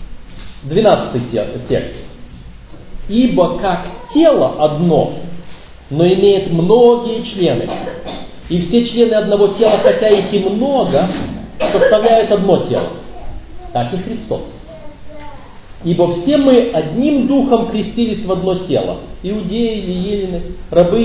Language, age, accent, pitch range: Russian, 40-59, native, 155-225 Hz